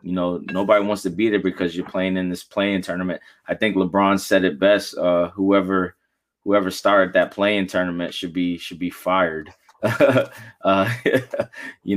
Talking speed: 170 wpm